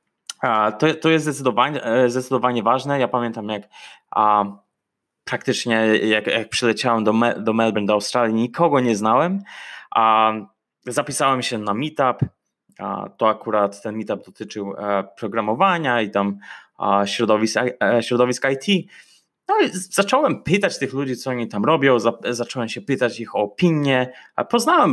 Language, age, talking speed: Polish, 20-39, 110 wpm